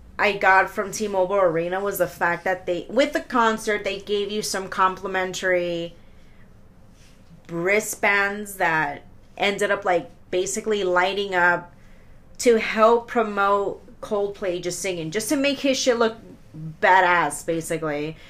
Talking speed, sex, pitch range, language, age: 130 wpm, female, 180-230 Hz, English, 30-49